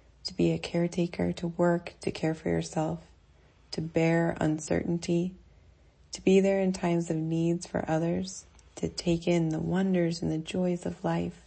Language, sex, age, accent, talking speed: English, female, 30-49, American, 165 wpm